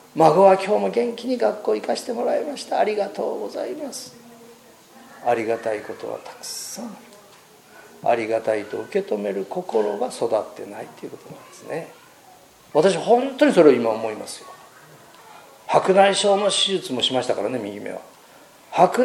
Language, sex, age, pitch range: Japanese, male, 40-59, 155-255 Hz